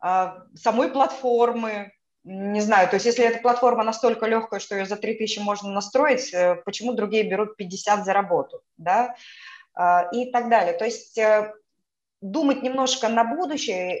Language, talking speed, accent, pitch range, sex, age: Russian, 140 wpm, native, 200-255 Hz, female, 20-39